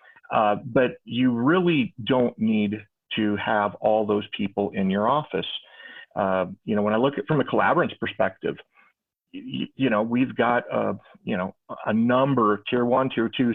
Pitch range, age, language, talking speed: 105-135 Hz, 40-59, English, 175 wpm